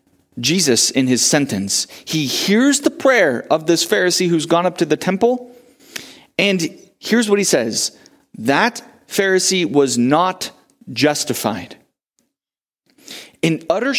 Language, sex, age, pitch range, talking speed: English, male, 30-49, 160-225 Hz, 125 wpm